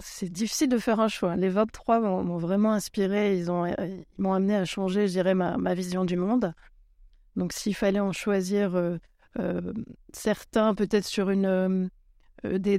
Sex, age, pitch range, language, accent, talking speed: female, 30-49, 180-205 Hz, French, French, 190 wpm